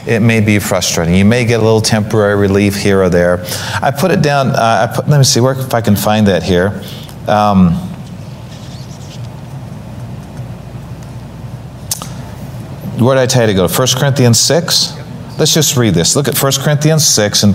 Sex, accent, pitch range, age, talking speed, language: male, American, 110-145 Hz, 40-59, 180 wpm, English